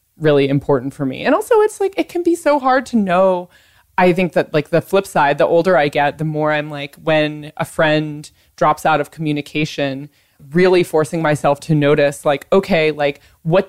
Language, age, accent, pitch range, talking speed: English, 20-39, American, 145-185 Hz, 200 wpm